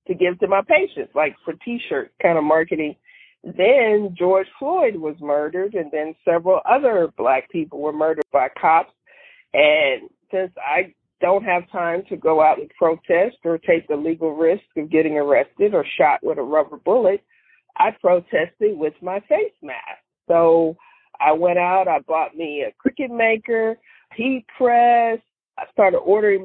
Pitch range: 180-245 Hz